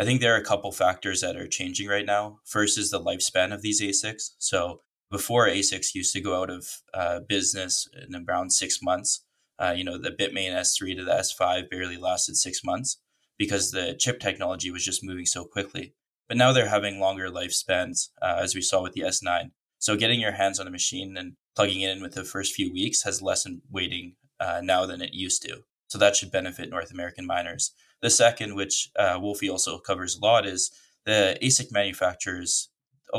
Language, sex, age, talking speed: English, male, 20-39, 205 wpm